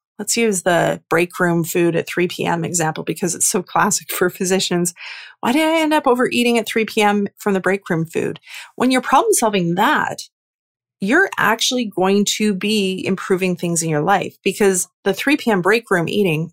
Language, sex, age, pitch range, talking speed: English, female, 30-49, 185-230 Hz, 190 wpm